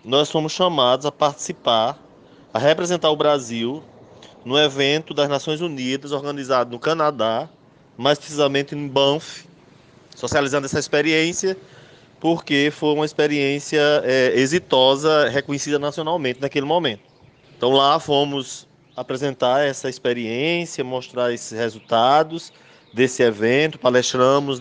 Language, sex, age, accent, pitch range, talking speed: Portuguese, male, 20-39, Brazilian, 125-155 Hz, 110 wpm